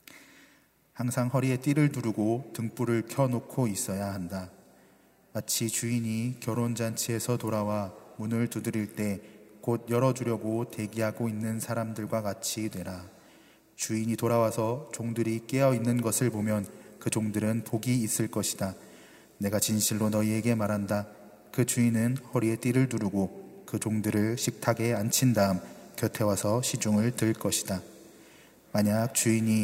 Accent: native